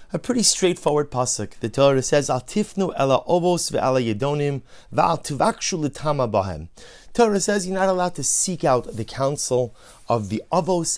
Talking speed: 110 wpm